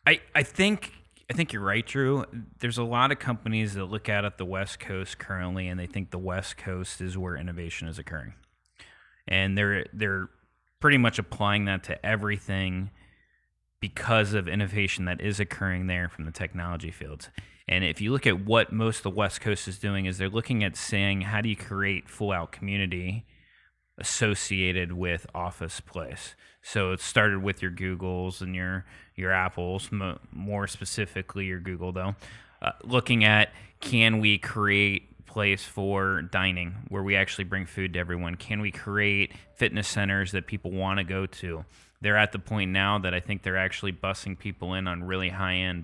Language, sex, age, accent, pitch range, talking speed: English, male, 30-49, American, 90-105 Hz, 185 wpm